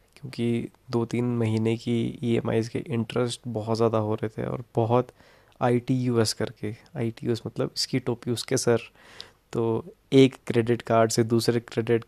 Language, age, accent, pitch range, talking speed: Hindi, 20-39, native, 110-130 Hz, 160 wpm